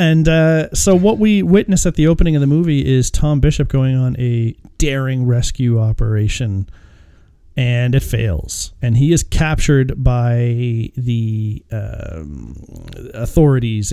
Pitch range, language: 110-150 Hz, English